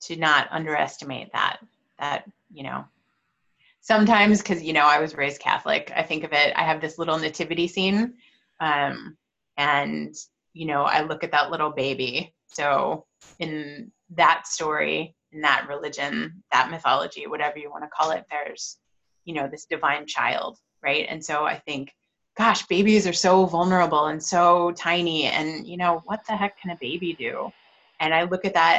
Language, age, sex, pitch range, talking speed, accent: English, 20-39, female, 150-175 Hz, 175 wpm, American